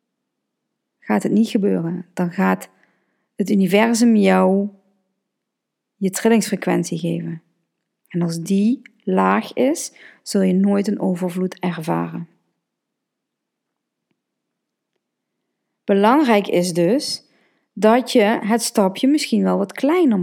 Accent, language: Dutch, Dutch